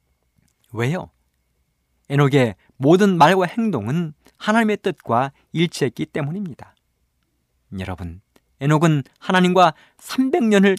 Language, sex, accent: Korean, male, native